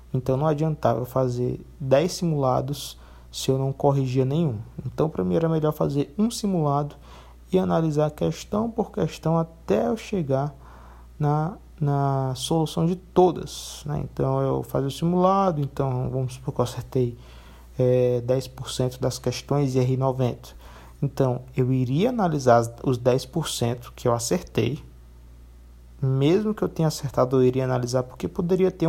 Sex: male